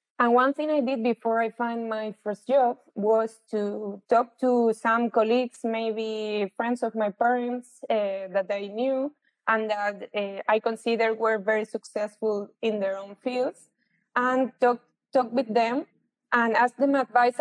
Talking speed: 160 wpm